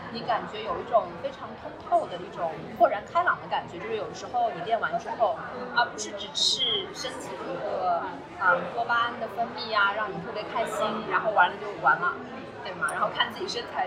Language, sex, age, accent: Chinese, female, 20-39, native